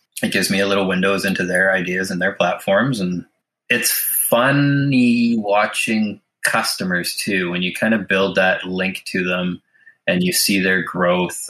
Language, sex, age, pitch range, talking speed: English, male, 20-39, 95-130 Hz, 165 wpm